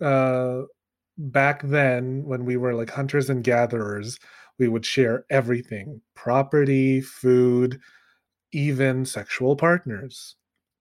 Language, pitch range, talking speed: English, 125-145 Hz, 105 wpm